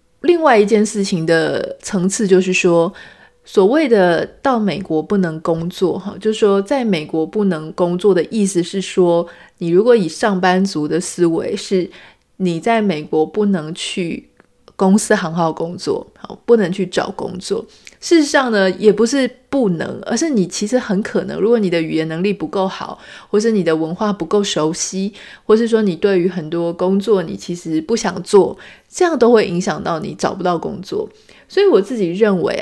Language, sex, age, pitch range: Chinese, female, 30-49, 175-220 Hz